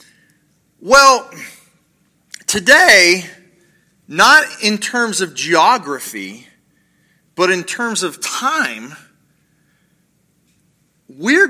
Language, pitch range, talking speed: English, 170-245 Hz, 70 wpm